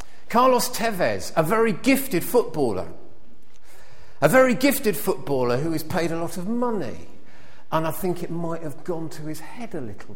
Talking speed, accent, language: 170 wpm, British, English